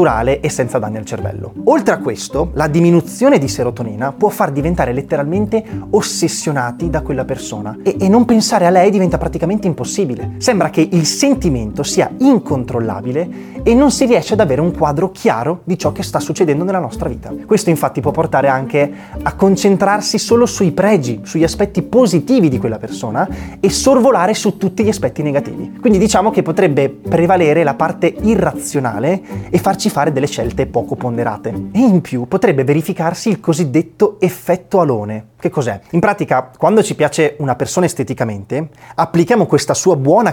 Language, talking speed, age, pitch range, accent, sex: Italian, 170 wpm, 20-39, 135-200 Hz, native, male